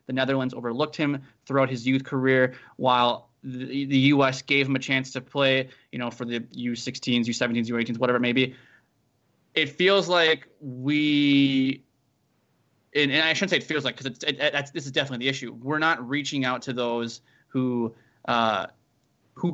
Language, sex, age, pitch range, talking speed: English, male, 20-39, 125-145 Hz, 165 wpm